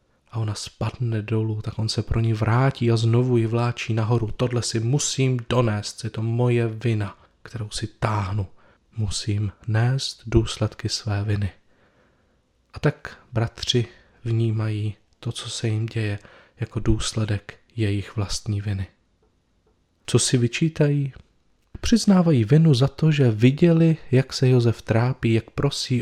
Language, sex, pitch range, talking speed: Czech, male, 110-130 Hz, 140 wpm